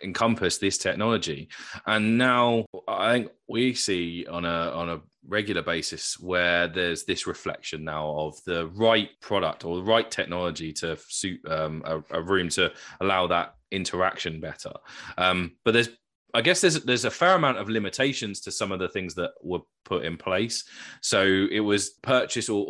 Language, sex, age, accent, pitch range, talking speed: English, male, 20-39, British, 85-110 Hz, 175 wpm